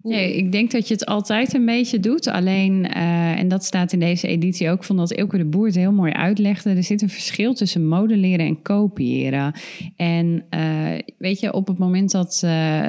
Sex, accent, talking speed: female, Dutch, 215 wpm